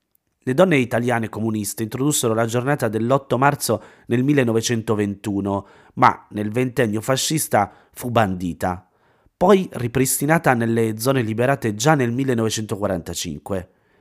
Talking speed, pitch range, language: 105 wpm, 105-130 Hz, Italian